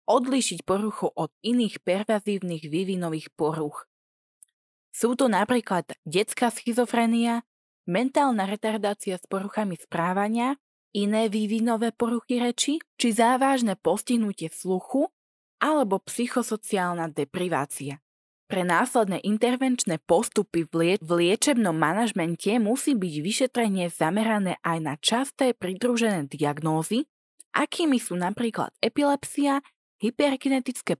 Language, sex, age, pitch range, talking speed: Slovak, female, 20-39, 175-235 Hz, 100 wpm